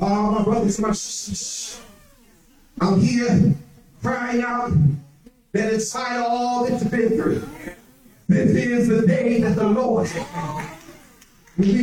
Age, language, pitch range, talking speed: 40-59, English, 195-245 Hz, 125 wpm